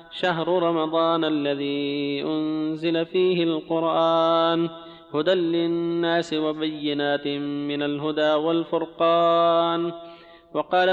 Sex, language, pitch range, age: male, Arabic, 150-170 Hz, 30-49